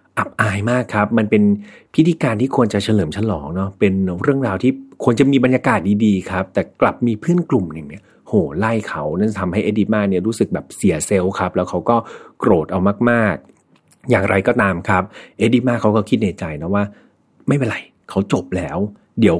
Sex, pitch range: male, 95-120 Hz